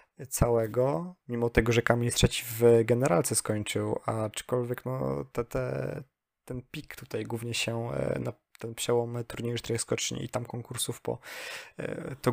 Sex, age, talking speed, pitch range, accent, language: male, 20-39, 140 wpm, 110-125 Hz, native, Polish